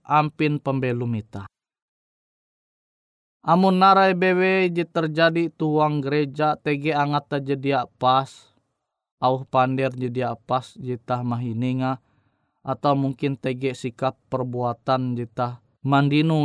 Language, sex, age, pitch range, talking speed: Indonesian, male, 20-39, 130-165 Hz, 95 wpm